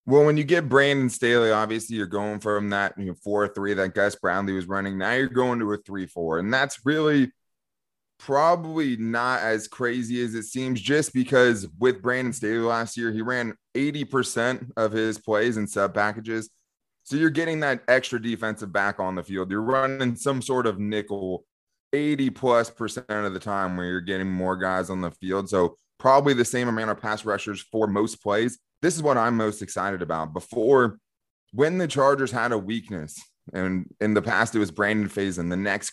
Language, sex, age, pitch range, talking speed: English, male, 20-39, 100-125 Hz, 190 wpm